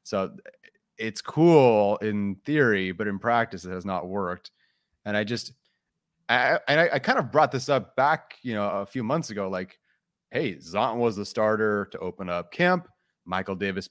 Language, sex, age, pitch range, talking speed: English, male, 30-49, 95-120 Hz, 180 wpm